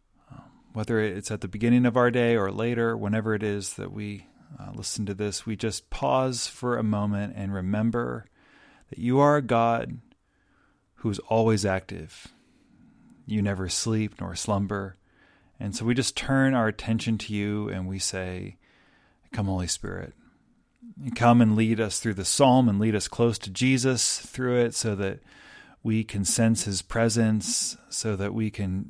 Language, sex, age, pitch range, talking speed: English, male, 30-49, 105-130 Hz, 170 wpm